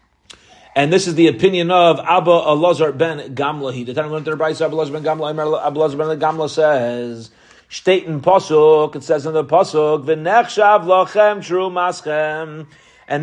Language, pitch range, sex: English, 150-190 Hz, male